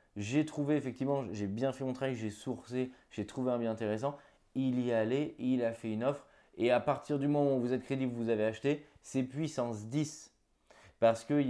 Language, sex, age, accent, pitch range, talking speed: French, male, 20-39, French, 115-145 Hz, 210 wpm